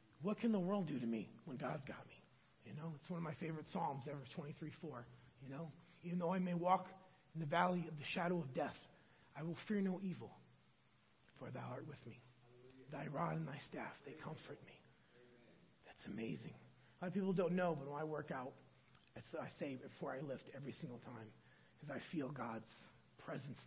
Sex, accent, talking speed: male, American, 210 wpm